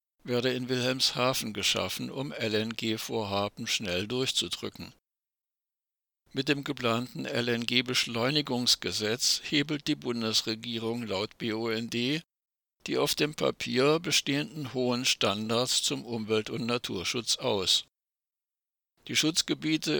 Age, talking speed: 60-79, 95 wpm